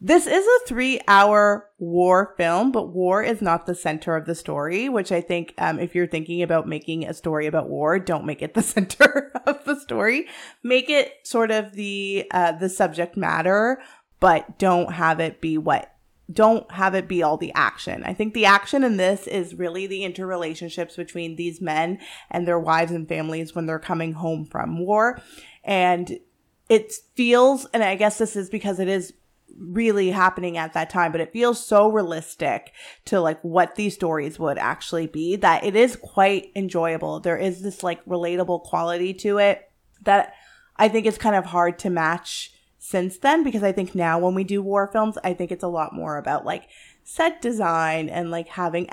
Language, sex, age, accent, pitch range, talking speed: English, female, 20-39, American, 170-215 Hz, 195 wpm